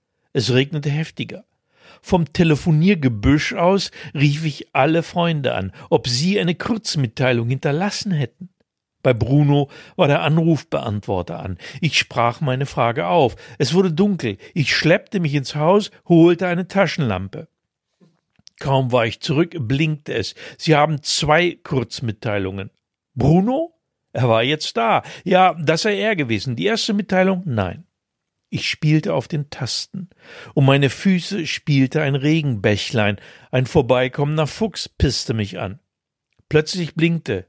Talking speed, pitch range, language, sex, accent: 130 wpm, 125-170 Hz, German, male, German